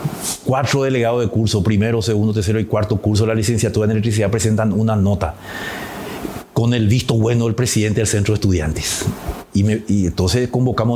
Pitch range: 100-120 Hz